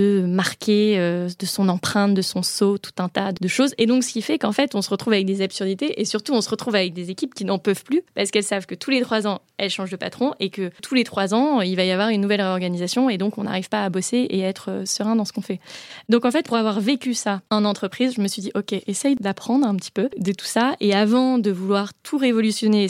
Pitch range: 195-230 Hz